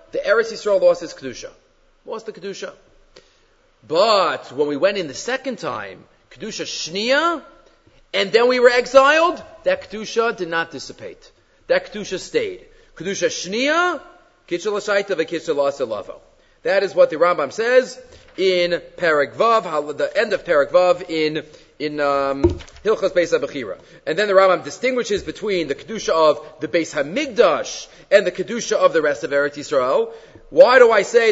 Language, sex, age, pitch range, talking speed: English, male, 30-49, 180-300 Hz, 150 wpm